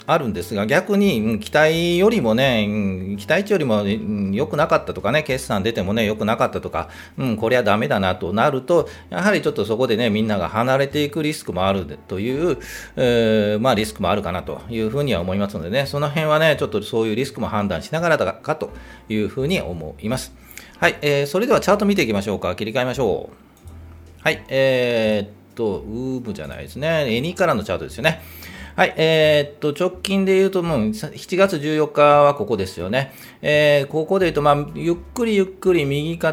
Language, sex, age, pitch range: Japanese, male, 40-59, 110-155 Hz